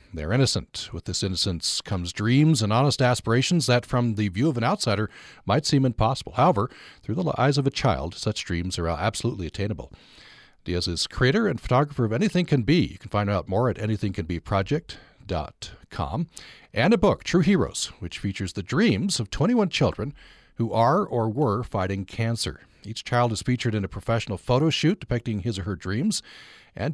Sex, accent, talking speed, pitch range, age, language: male, American, 180 wpm, 90-125 Hz, 40-59, English